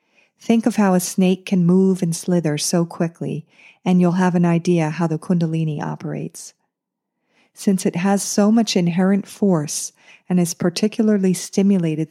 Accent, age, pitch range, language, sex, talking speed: American, 40-59, 165-195 Hz, English, female, 155 wpm